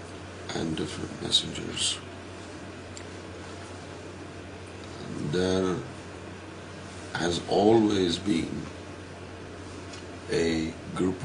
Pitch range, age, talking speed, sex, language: 85-95 Hz, 60-79, 55 wpm, male, Urdu